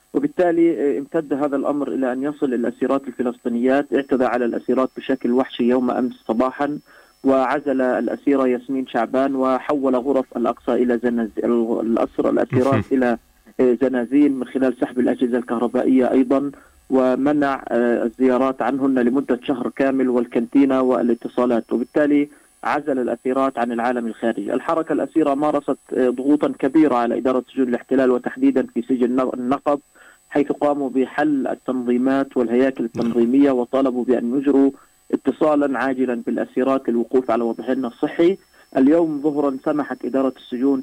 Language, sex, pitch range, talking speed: Arabic, male, 125-140 Hz, 120 wpm